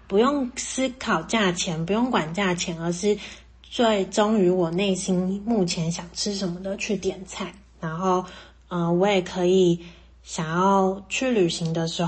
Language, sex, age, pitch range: Chinese, female, 20-39, 175-205 Hz